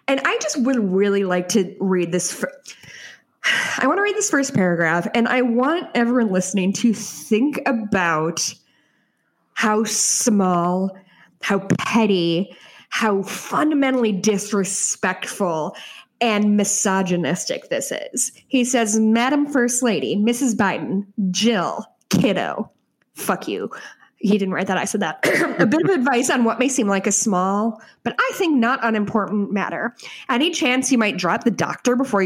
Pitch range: 195-250 Hz